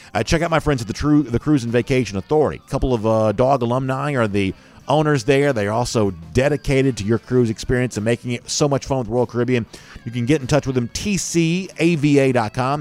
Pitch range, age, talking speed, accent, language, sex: 100-135 Hz, 50-69, 225 wpm, American, English, male